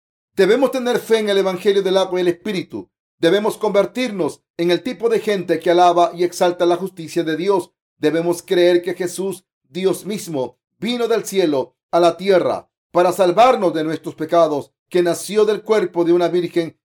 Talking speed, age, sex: 180 wpm, 40-59, male